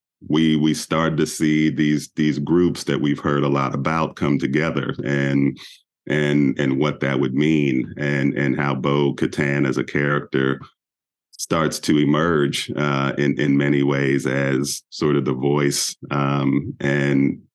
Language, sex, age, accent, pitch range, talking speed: English, male, 40-59, American, 70-80 Hz, 155 wpm